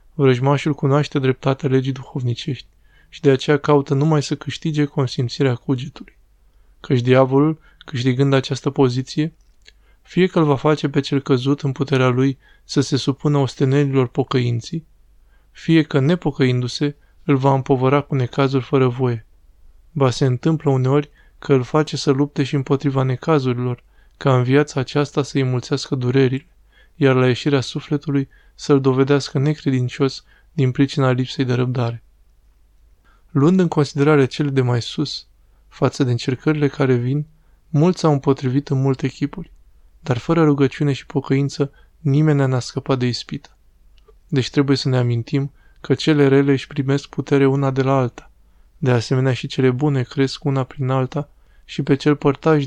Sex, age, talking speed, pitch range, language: male, 20-39, 150 wpm, 130-145 Hz, Romanian